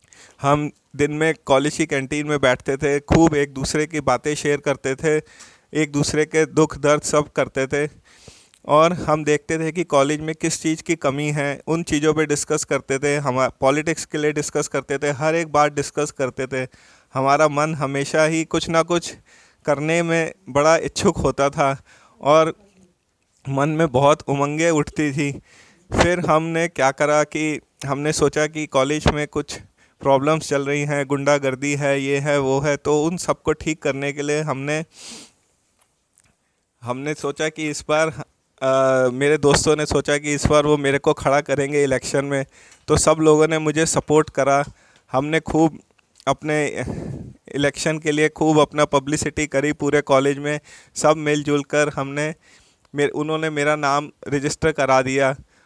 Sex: male